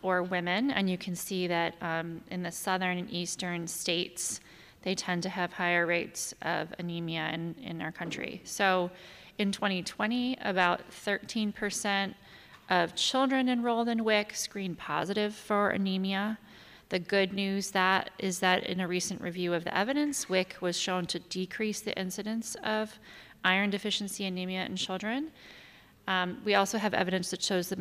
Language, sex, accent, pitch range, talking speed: English, female, American, 175-205 Hz, 160 wpm